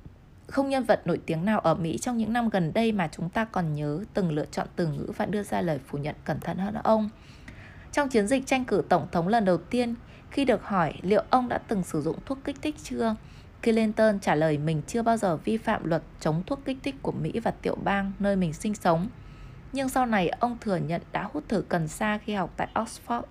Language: Vietnamese